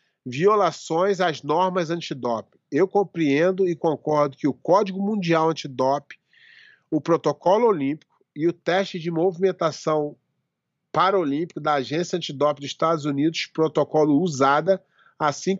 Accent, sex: Brazilian, male